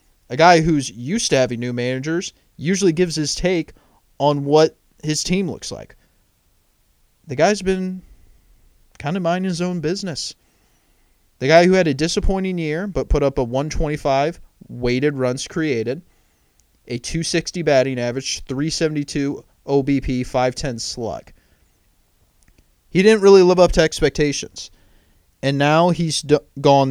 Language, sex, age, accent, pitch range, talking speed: English, male, 20-39, American, 115-155 Hz, 135 wpm